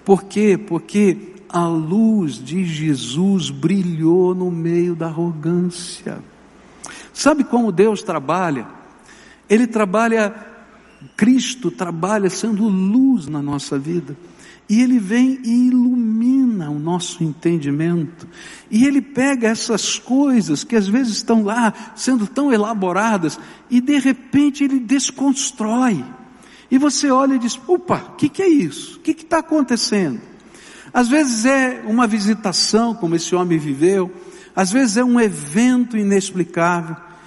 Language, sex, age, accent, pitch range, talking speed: Portuguese, male, 60-79, Brazilian, 190-265 Hz, 130 wpm